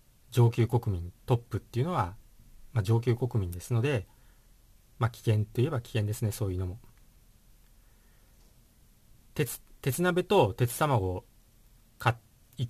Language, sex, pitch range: Japanese, male, 100-120 Hz